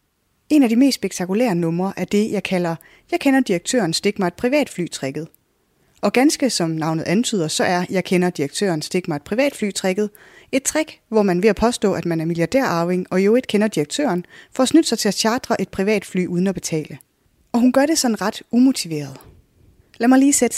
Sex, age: female, 20-39